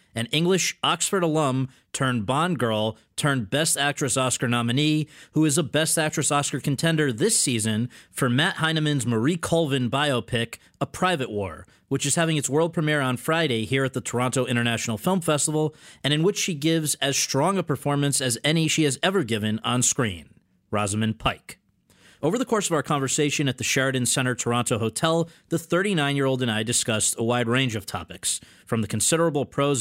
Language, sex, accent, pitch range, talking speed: English, male, American, 120-155 Hz, 180 wpm